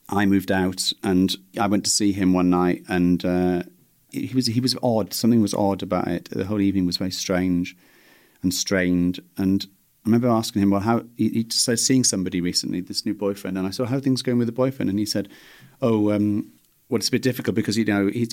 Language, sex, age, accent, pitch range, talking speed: English, male, 30-49, British, 95-115 Hz, 225 wpm